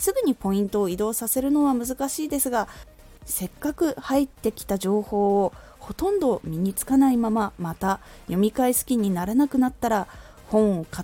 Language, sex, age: Japanese, female, 20-39